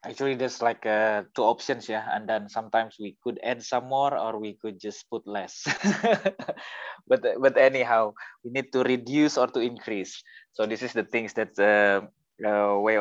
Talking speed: 185 wpm